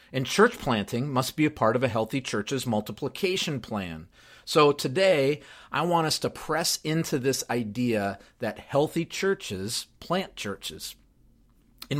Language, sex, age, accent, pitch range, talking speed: English, male, 40-59, American, 115-150 Hz, 145 wpm